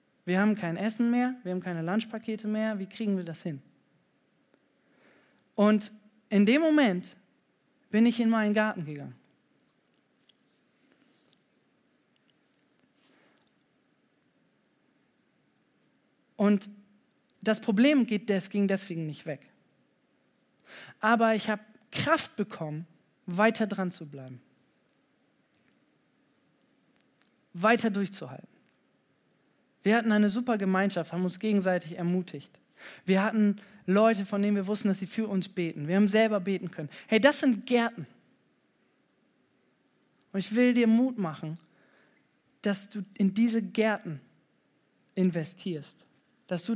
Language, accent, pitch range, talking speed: German, German, 175-220 Hz, 110 wpm